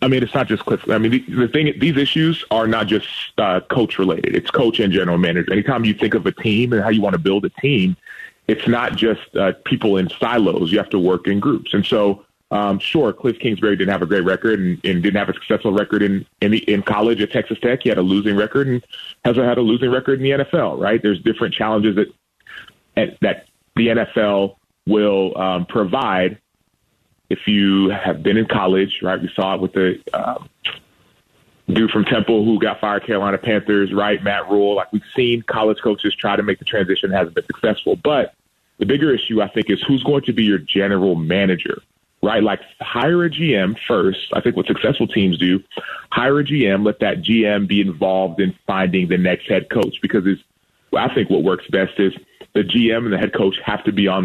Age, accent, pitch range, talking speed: 30-49, American, 95-120 Hz, 220 wpm